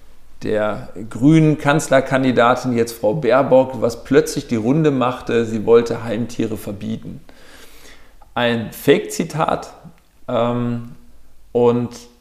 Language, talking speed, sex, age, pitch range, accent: German, 90 wpm, male, 40-59, 115-145 Hz, German